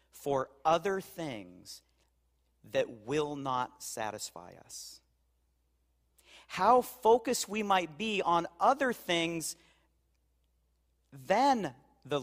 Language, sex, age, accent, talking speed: English, male, 40-59, American, 90 wpm